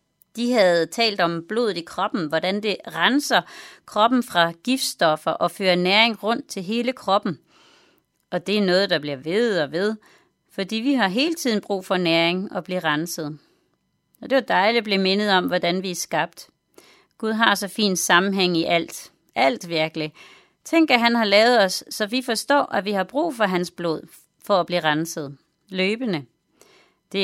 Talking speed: 185 wpm